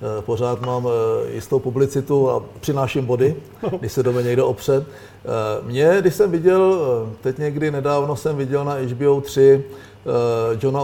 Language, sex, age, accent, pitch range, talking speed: Czech, male, 50-69, native, 135-165 Hz, 145 wpm